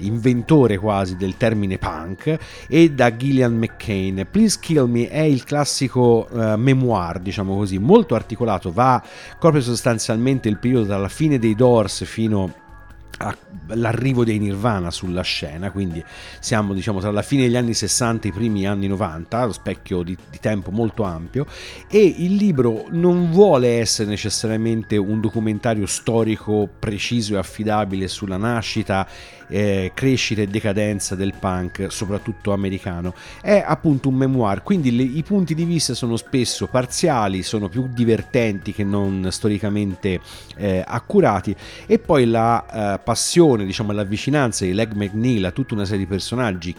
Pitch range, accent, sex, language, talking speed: 100-125 Hz, native, male, Italian, 150 wpm